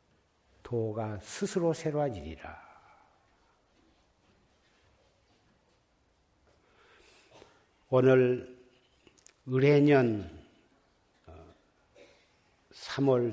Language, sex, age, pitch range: Korean, male, 60-79, 110-130 Hz